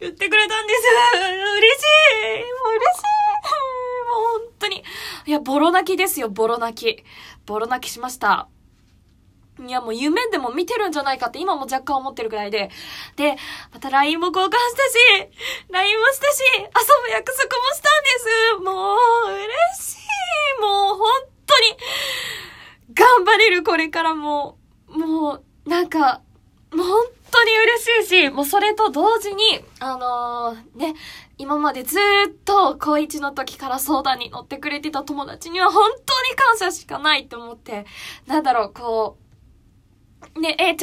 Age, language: 20-39, Japanese